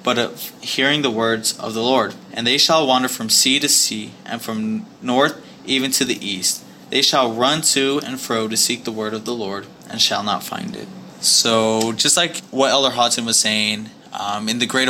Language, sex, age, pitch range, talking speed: English, male, 20-39, 115-145 Hz, 215 wpm